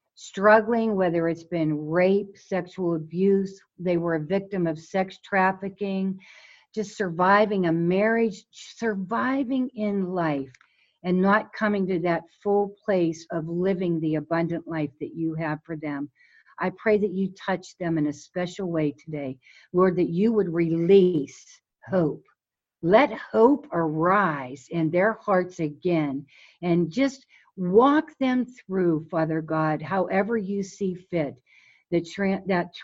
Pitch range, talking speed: 160-200 Hz, 135 wpm